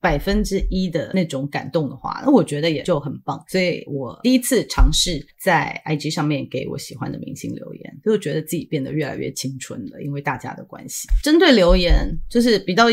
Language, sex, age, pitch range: Chinese, female, 30-49, 150-195 Hz